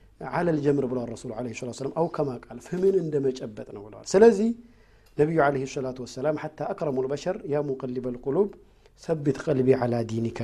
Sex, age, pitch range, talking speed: male, 50-69, 125-190 Hz, 160 wpm